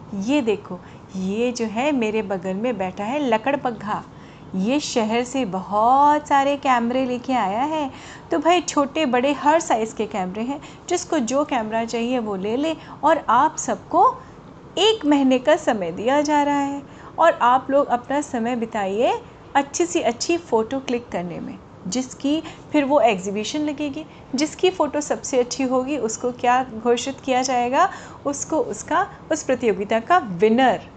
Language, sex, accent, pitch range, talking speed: Hindi, female, native, 215-290 Hz, 160 wpm